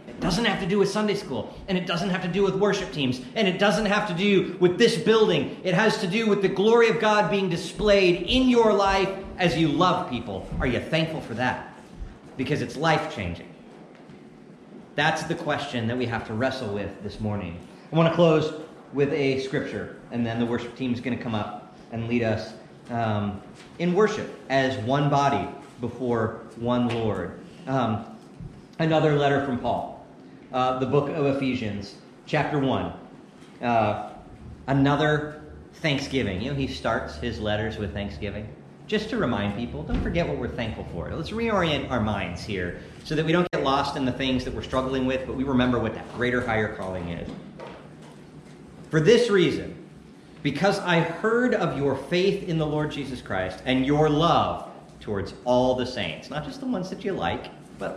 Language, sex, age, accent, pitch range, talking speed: English, male, 40-59, American, 120-180 Hz, 185 wpm